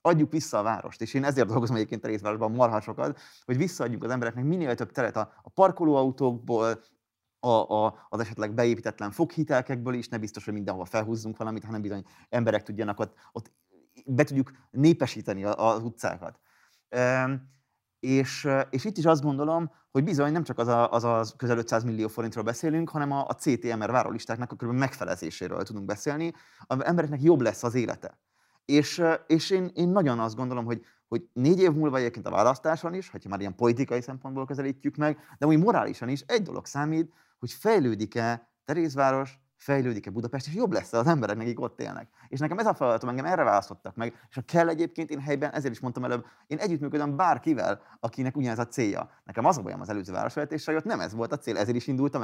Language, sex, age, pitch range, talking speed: Hungarian, male, 30-49, 115-150 Hz, 190 wpm